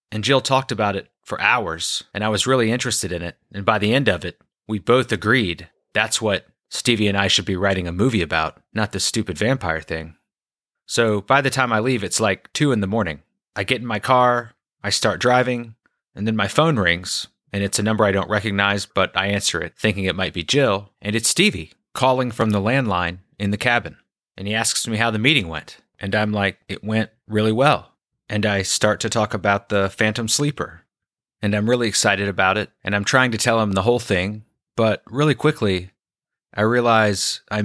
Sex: male